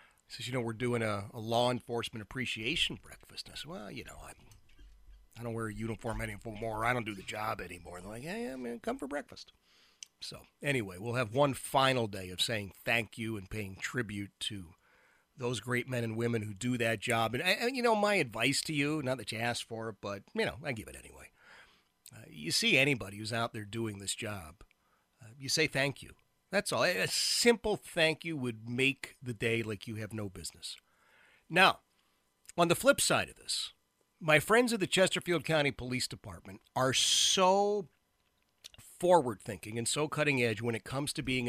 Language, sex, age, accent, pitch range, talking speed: English, male, 40-59, American, 110-140 Hz, 195 wpm